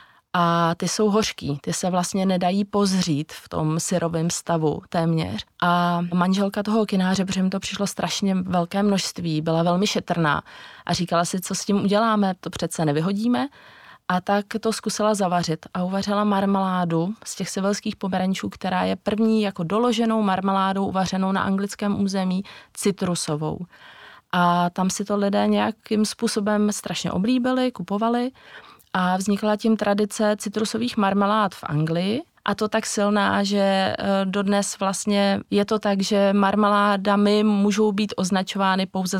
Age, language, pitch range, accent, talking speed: 20-39, Czech, 175-205 Hz, native, 145 wpm